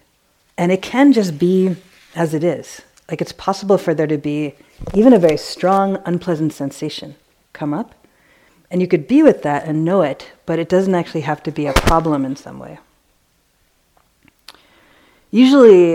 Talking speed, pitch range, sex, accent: 170 wpm, 150-180 Hz, female, American